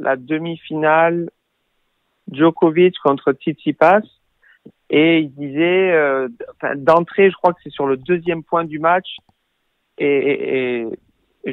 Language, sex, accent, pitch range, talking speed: French, male, French, 140-165 Hz, 120 wpm